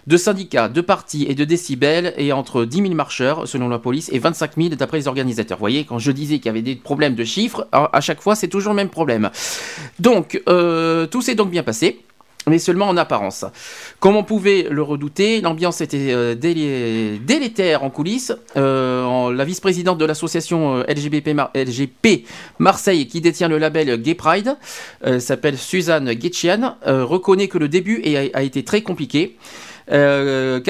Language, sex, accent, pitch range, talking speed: French, male, French, 140-190 Hz, 180 wpm